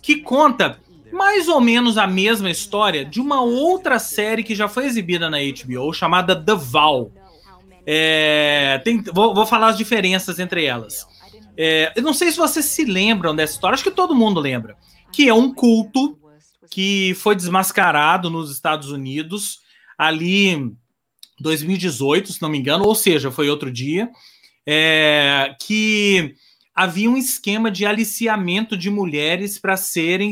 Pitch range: 160-235 Hz